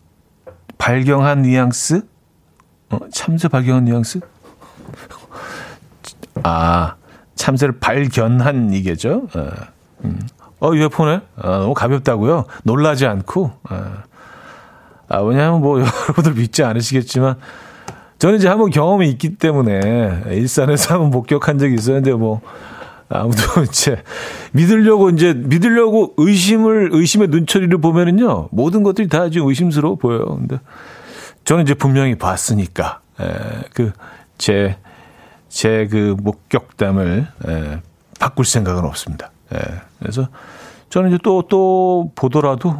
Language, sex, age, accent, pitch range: Korean, male, 40-59, native, 110-165 Hz